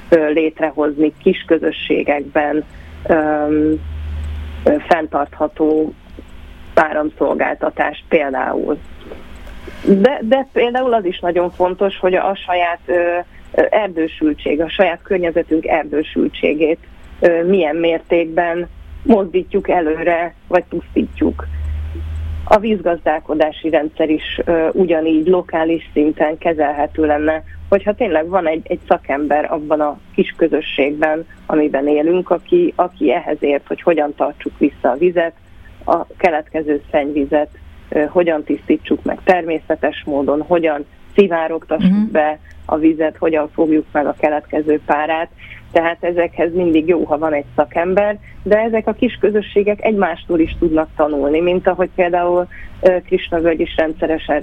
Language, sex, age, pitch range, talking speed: Hungarian, female, 30-49, 150-180 Hz, 120 wpm